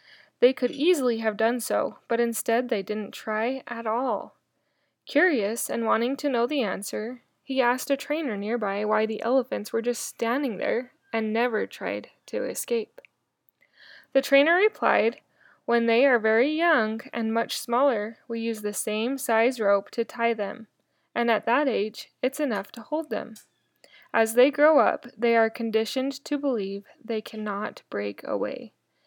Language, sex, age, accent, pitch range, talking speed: English, female, 20-39, American, 215-255 Hz, 165 wpm